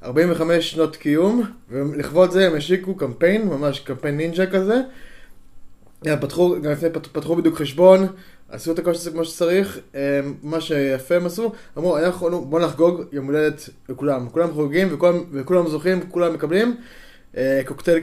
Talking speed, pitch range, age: 125 wpm, 145-185 Hz, 20-39